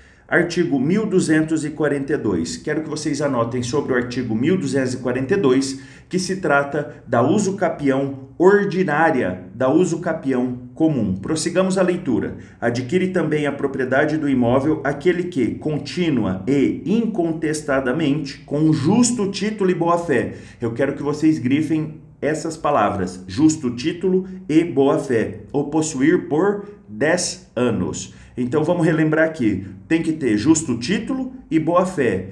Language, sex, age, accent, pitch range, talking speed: Portuguese, male, 40-59, Brazilian, 130-170 Hz, 125 wpm